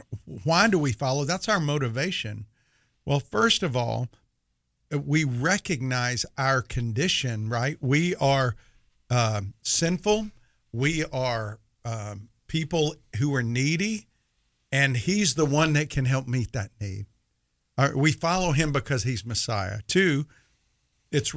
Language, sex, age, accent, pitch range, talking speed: English, male, 50-69, American, 115-150 Hz, 130 wpm